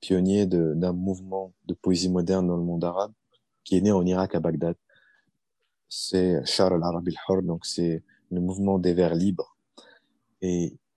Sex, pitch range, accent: male, 85-95 Hz, French